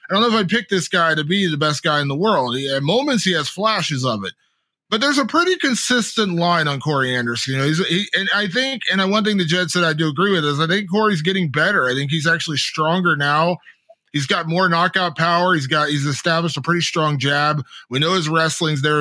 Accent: American